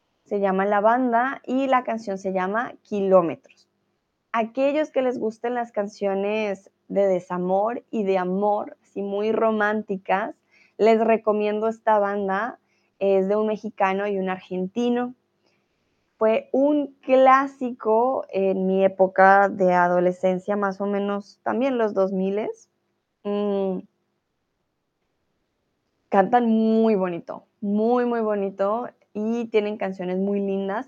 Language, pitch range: Spanish, 195-240 Hz